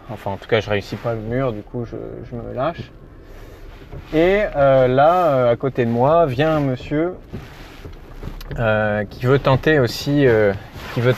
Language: French